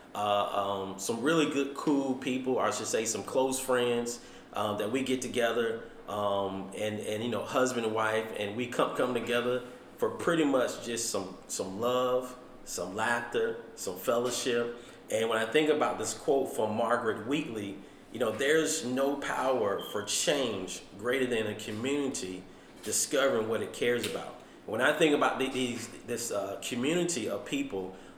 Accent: American